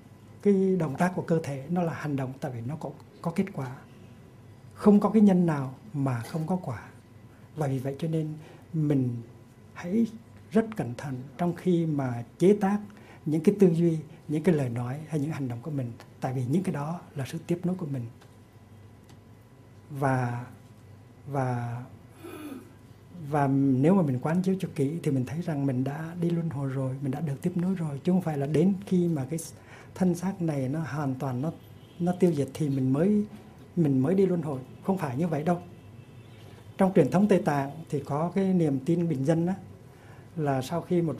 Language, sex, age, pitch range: Korean, male, 60-79, 125-170 Hz